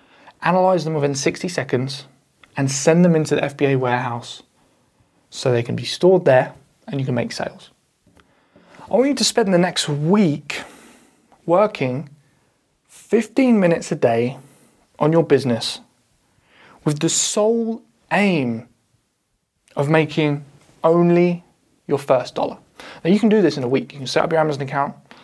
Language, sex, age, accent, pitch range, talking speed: English, male, 20-39, British, 140-180 Hz, 150 wpm